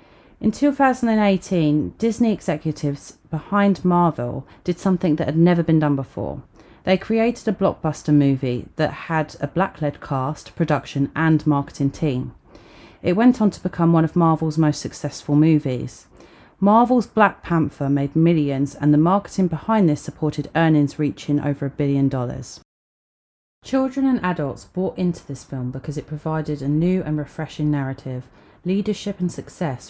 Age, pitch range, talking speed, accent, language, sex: 30-49, 145-180 Hz, 150 wpm, British, English, female